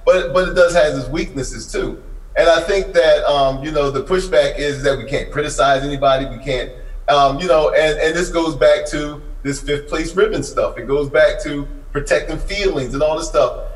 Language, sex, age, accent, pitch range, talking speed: English, male, 30-49, American, 140-175 Hz, 215 wpm